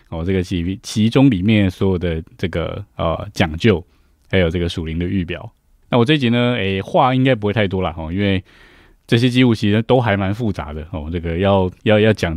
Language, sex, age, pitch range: Chinese, male, 20-39, 90-110 Hz